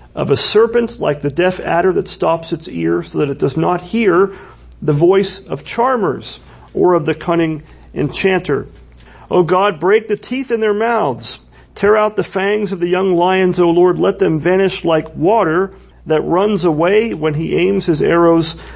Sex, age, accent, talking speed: male, 40-59, American, 180 wpm